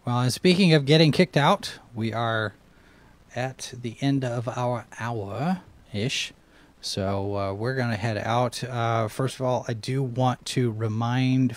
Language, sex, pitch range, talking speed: English, male, 115-140 Hz, 155 wpm